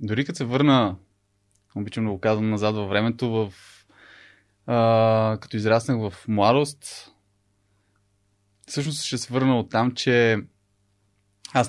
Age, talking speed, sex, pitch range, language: 20-39, 130 wpm, male, 105-130 Hz, Bulgarian